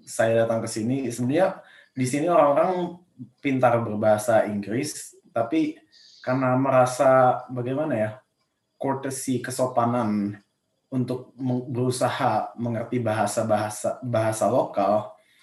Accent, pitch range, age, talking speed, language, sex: native, 105-125 Hz, 20-39, 95 wpm, Indonesian, male